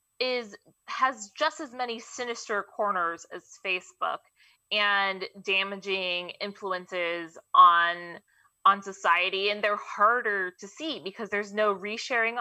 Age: 20-39